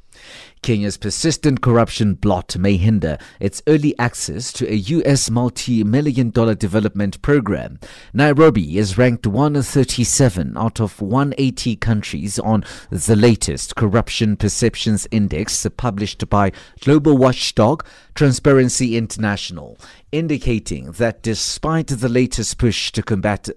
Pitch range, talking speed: 100-130 Hz, 110 wpm